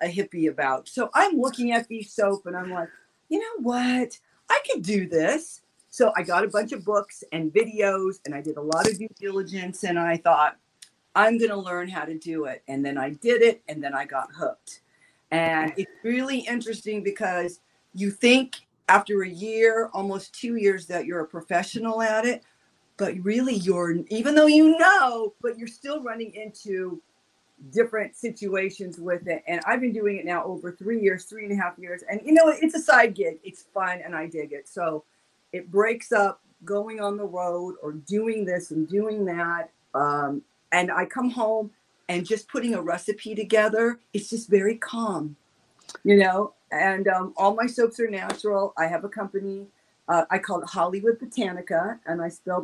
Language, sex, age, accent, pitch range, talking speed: English, female, 50-69, American, 175-225 Hz, 195 wpm